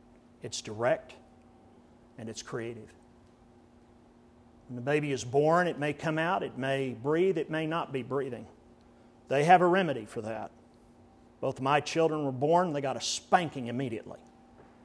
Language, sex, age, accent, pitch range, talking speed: English, male, 50-69, American, 120-150 Hz, 155 wpm